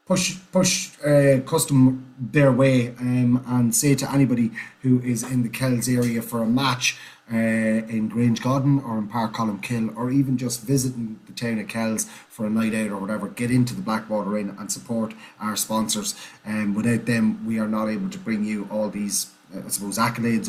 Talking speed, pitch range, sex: 200 wpm, 115-135 Hz, male